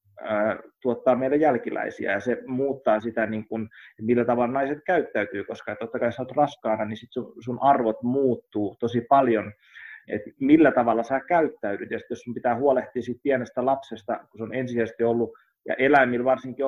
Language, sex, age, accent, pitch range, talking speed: Finnish, male, 20-39, native, 110-125 Hz, 160 wpm